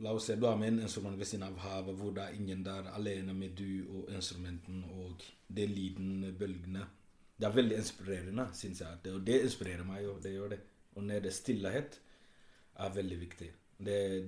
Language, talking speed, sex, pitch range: English, 195 wpm, male, 95-115 Hz